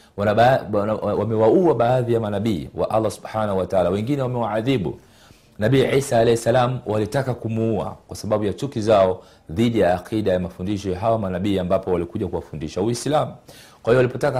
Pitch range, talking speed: 90-120 Hz, 190 wpm